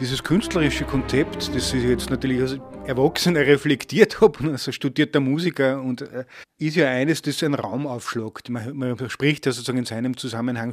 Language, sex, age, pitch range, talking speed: German, male, 30-49, 125-150 Hz, 170 wpm